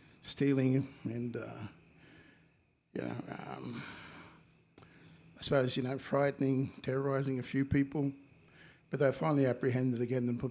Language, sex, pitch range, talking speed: English, male, 125-145 Hz, 125 wpm